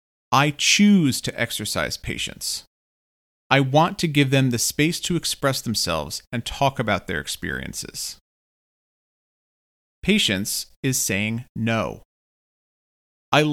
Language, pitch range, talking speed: English, 95-140 Hz, 110 wpm